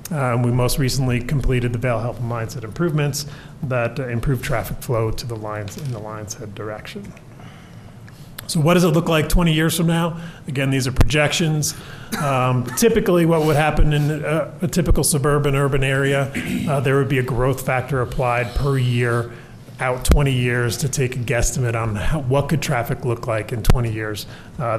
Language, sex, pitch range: English, male, 120-150 Hz